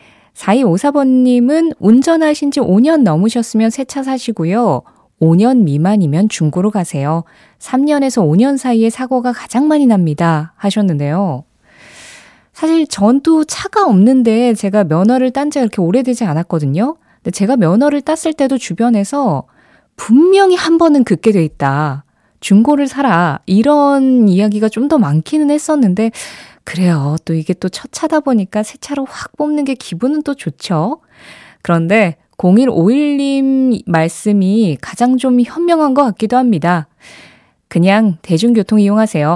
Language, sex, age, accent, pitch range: Korean, female, 20-39, native, 175-270 Hz